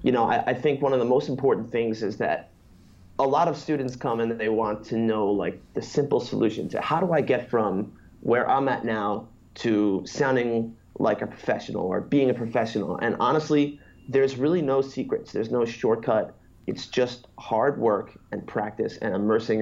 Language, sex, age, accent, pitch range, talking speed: English, male, 30-49, American, 110-135 Hz, 195 wpm